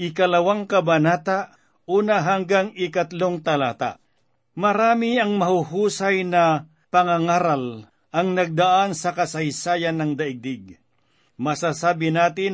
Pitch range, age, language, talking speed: 155-185 Hz, 50-69, Filipino, 90 wpm